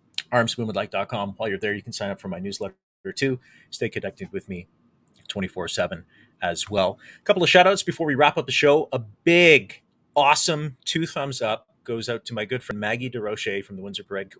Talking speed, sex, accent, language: 200 wpm, male, American, English